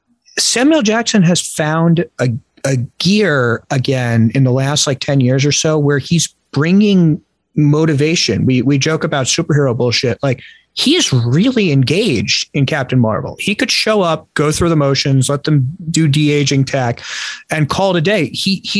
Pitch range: 130-165 Hz